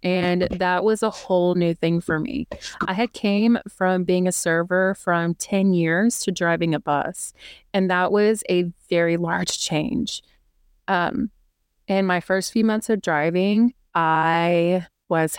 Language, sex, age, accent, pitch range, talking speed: English, female, 30-49, American, 170-200 Hz, 155 wpm